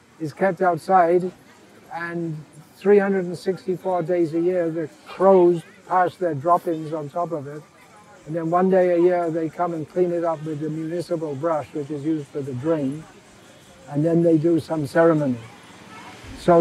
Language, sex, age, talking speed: English, male, 60-79, 165 wpm